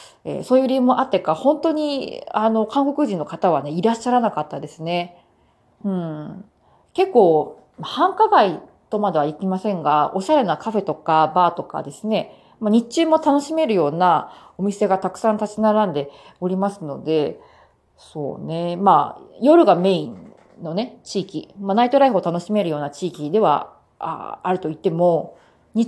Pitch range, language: 170-255 Hz, Japanese